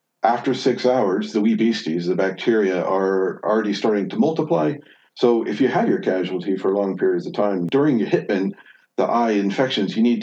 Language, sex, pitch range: English, male, 95-125 Hz